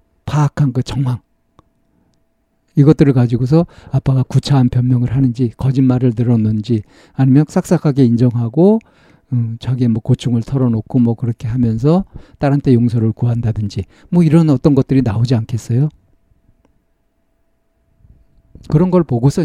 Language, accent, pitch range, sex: Korean, native, 115-140 Hz, male